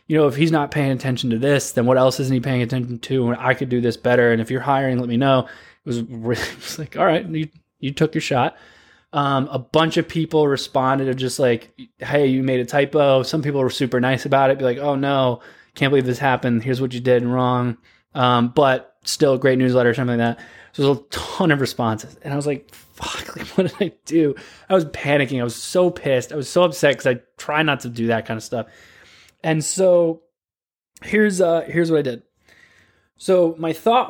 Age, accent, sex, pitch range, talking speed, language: 20-39, American, male, 125-155 Hz, 240 wpm, English